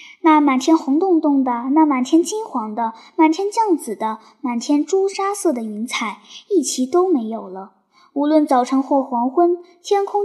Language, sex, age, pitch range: Chinese, male, 10-29, 245-355 Hz